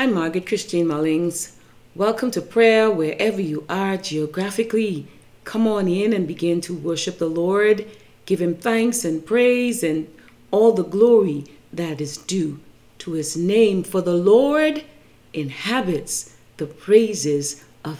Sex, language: female, English